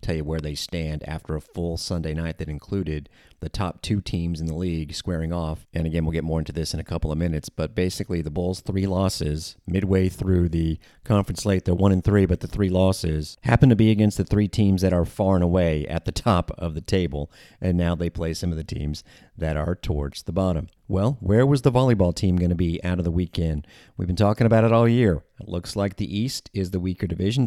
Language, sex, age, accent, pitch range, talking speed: English, male, 40-59, American, 80-100 Hz, 245 wpm